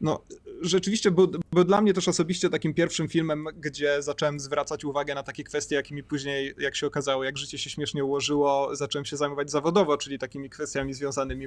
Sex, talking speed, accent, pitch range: male, 195 wpm, native, 130-145 Hz